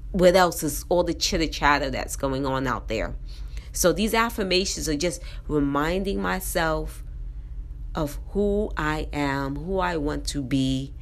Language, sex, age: English, female, 30-49